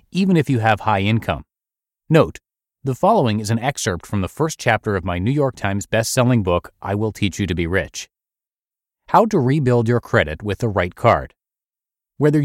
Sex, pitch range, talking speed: male, 100-140 Hz, 195 wpm